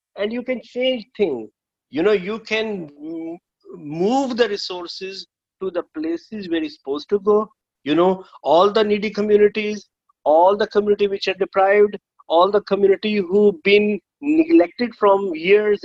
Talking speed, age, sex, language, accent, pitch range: 150 wpm, 50-69, male, English, Indian, 165-220 Hz